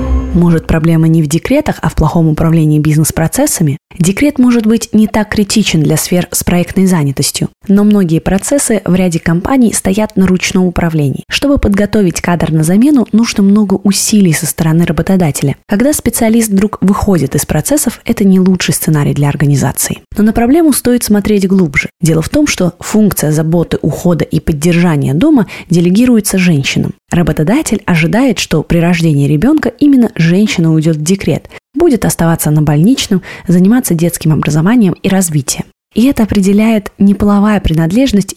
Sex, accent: female, native